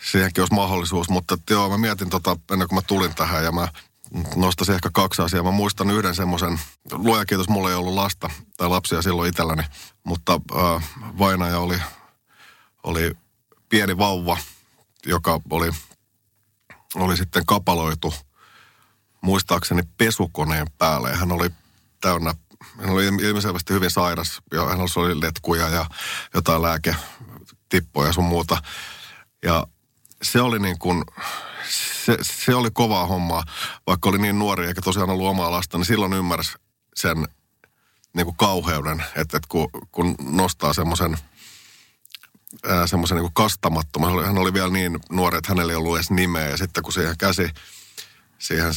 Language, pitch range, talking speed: Finnish, 85-95 Hz, 145 wpm